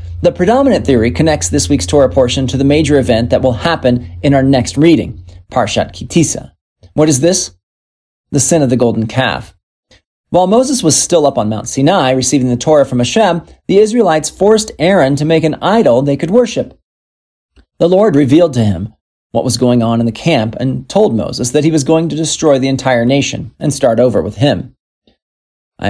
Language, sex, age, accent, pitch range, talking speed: English, male, 40-59, American, 115-150 Hz, 195 wpm